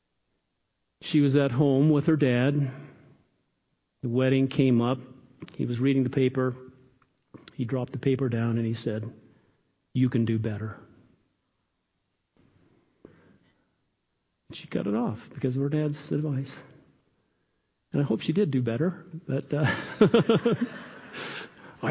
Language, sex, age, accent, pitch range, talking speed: English, male, 50-69, American, 125-160 Hz, 125 wpm